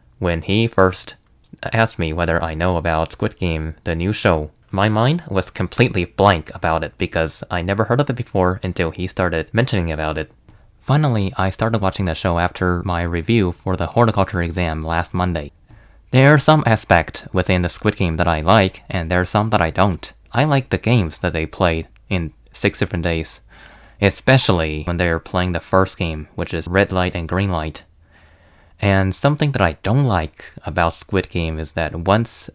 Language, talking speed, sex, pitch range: English, 195 wpm, male, 85-105 Hz